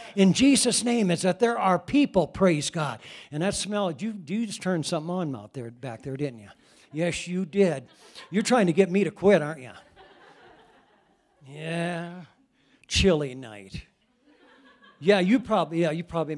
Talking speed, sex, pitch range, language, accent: 155 wpm, male, 150-200 Hz, English, American